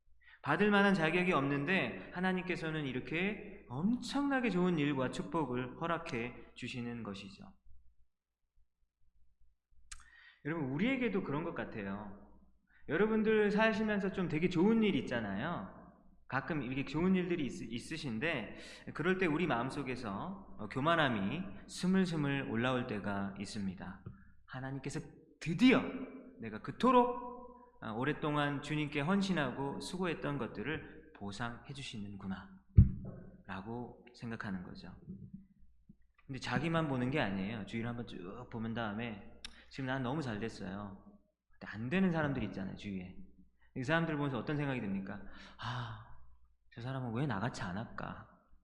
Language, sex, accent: Korean, male, native